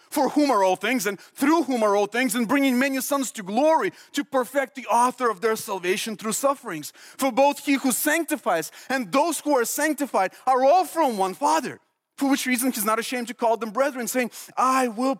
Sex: male